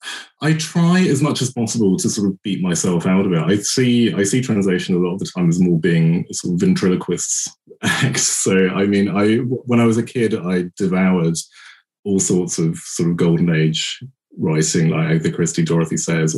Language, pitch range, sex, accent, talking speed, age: English, 85-140 Hz, male, British, 205 wpm, 20-39